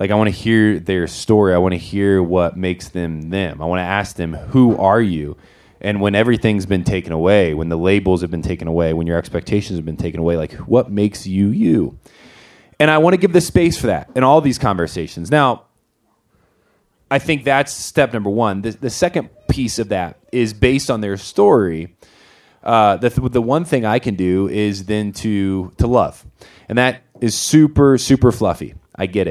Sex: male